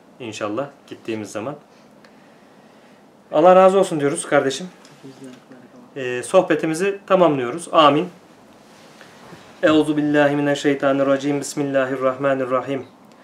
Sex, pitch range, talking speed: male, 140-155 Hz, 70 wpm